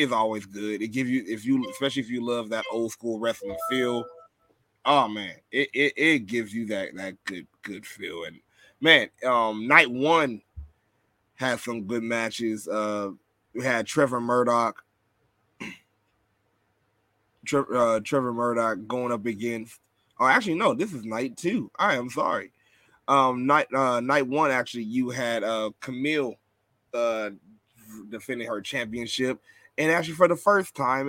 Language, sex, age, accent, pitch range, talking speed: English, male, 20-39, American, 110-140 Hz, 150 wpm